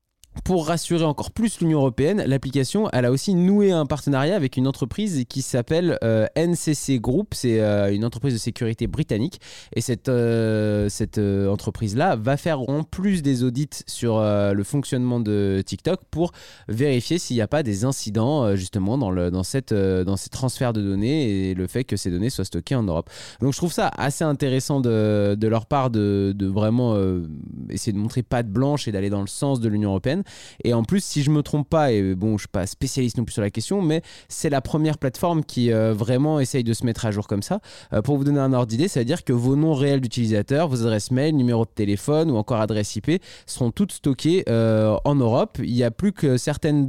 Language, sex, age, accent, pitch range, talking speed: French, male, 20-39, French, 105-145 Hz, 230 wpm